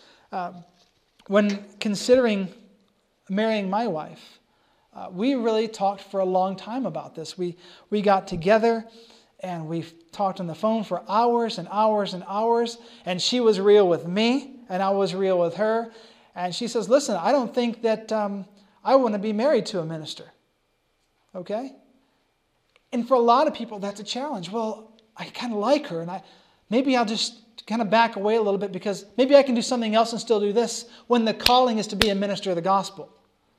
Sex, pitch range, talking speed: male, 190-230 Hz, 200 wpm